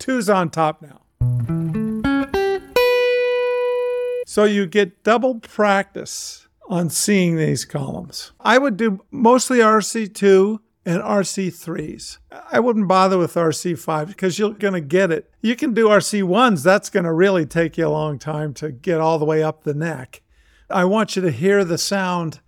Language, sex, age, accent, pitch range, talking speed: English, male, 50-69, American, 165-215 Hz, 160 wpm